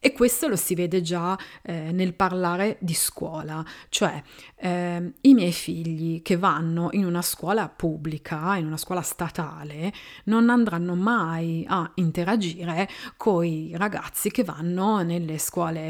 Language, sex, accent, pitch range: Italian, female, native, 160-190 Hz